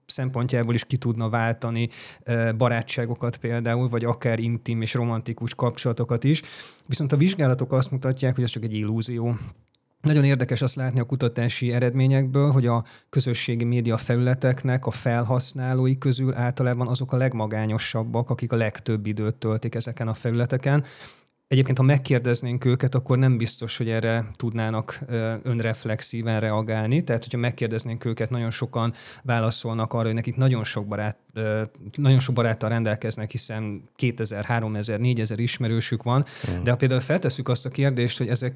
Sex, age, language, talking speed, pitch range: male, 30-49, Hungarian, 150 wpm, 110-130 Hz